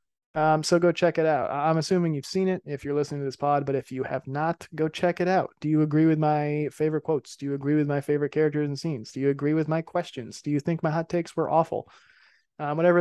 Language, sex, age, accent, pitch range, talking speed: English, male, 20-39, American, 135-160 Hz, 270 wpm